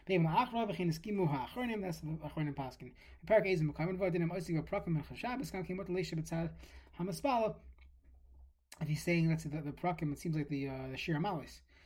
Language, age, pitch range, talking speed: English, 20-39, 145-200 Hz, 75 wpm